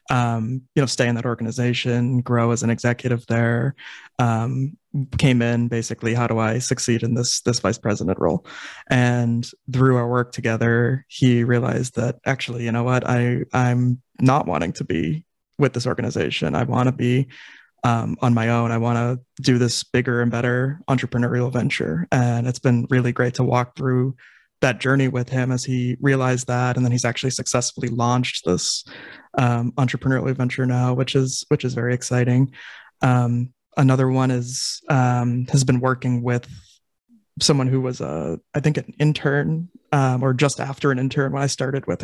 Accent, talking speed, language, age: American, 180 wpm, English, 20-39